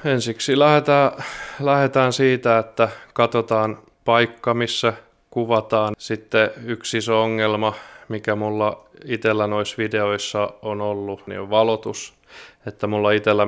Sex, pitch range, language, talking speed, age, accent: male, 105-115 Hz, Finnish, 115 wpm, 20-39, native